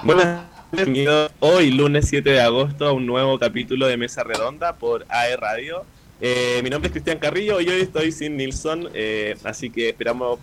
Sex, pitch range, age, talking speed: male, 125-155 Hz, 20-39, 185 wpm